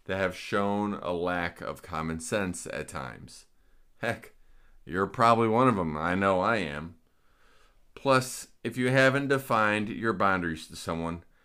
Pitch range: 85-125 Hz